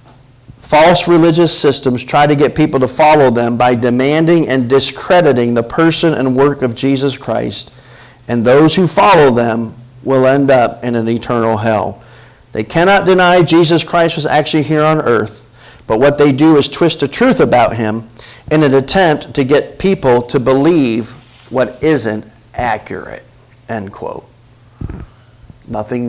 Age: 40-59